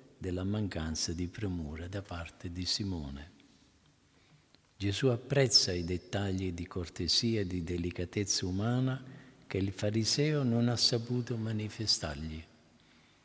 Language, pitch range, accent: Italian, 90-120 Hz, native